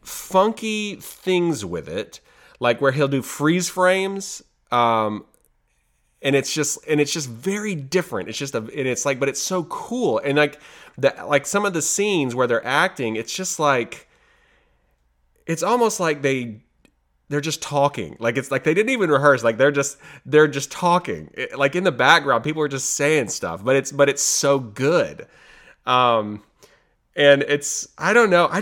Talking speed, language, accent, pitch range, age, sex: 175 wpm, English, American, 135-185 Hz, 30-49, male